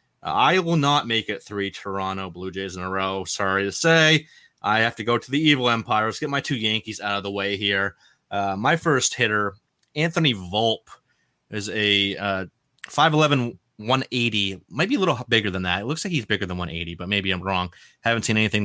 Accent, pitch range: American, 100-120 Hz